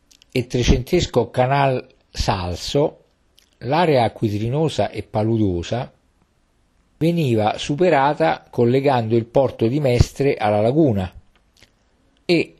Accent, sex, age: native, male, 50-69